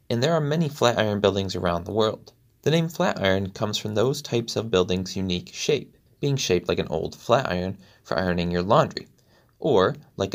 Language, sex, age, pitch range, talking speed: English, male, 20-39, 95-130 Hz, 205 wpm